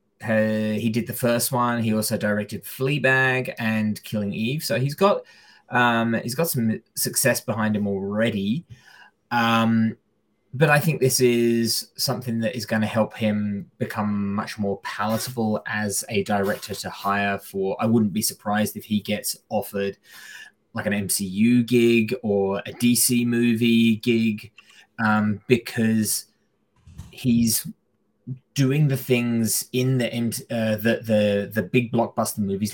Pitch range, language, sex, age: 105-125 Hz, English, male, 20-39